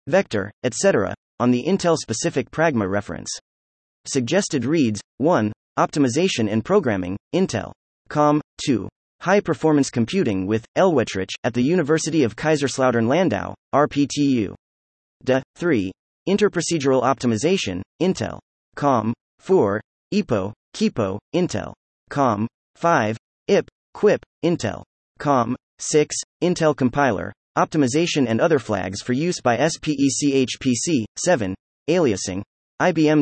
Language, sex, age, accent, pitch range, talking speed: English, male, 30-49, American, 105-155 Hz, 100 wpm